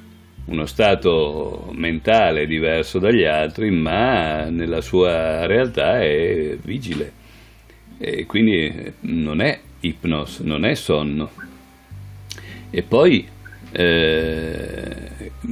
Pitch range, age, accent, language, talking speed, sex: 80-100 Hz, 50-69, native, Italian, 90 wpm, male